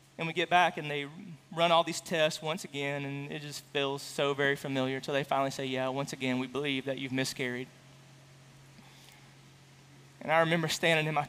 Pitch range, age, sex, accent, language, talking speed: 140-165 Hz, 20-39, male, American, English, 195 wpm